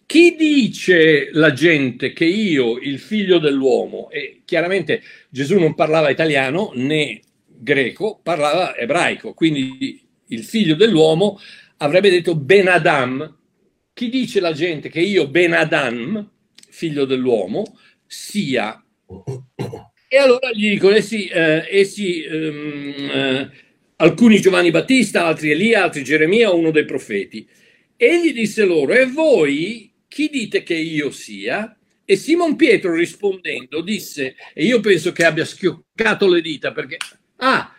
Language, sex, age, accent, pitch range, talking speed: Italian, male, 50-69, native, 155-235 Hz, 130 wpm